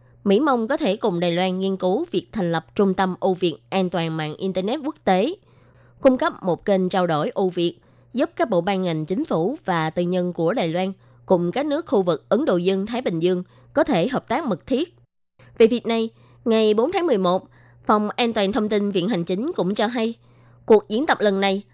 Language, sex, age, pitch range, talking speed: Vietnamese, female, 20-39, 175-225 Hz, 225 wpm